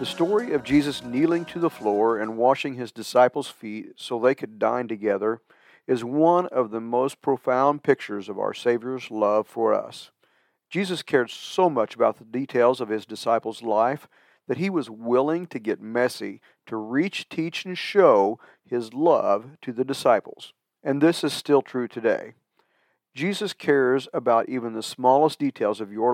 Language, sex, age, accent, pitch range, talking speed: English, male, 50-69, American, 115-155 Hz, 170 wpm